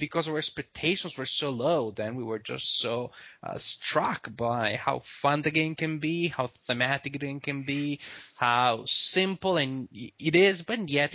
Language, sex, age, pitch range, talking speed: English, male, 20-39, 130-170 Hz, 180 wpm